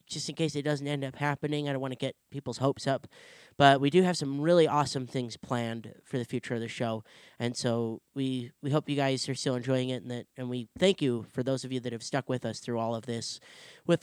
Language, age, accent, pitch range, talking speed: English, 20-39, American, 125-150 Hz, 265 wpm